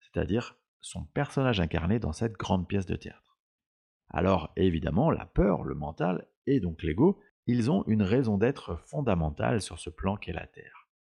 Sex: male